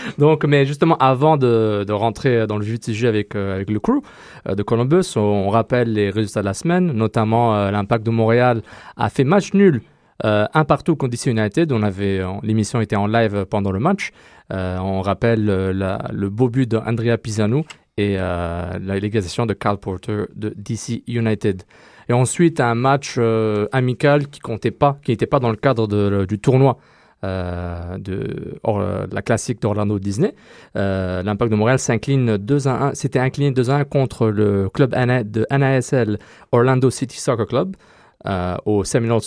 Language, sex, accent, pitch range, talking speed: French, male, French, 100-125 Hz, 175 wpm